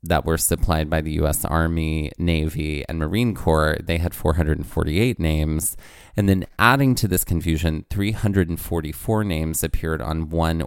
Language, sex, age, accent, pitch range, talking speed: English, male, 30-49, American, 80-90 Hz, 145 wpm